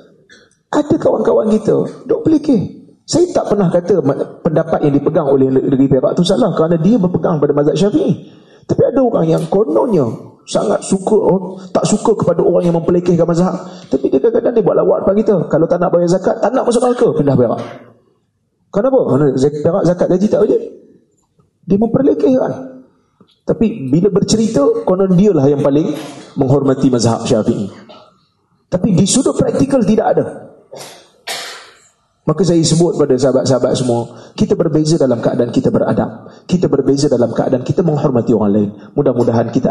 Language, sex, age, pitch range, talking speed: Malay, male, 30-49, 130-195 Hz, 155 wpm